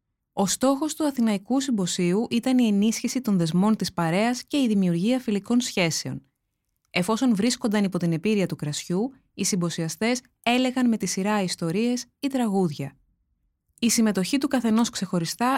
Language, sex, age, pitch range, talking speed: Greek, female, 20-39, 185-245 Hz, 145 wpm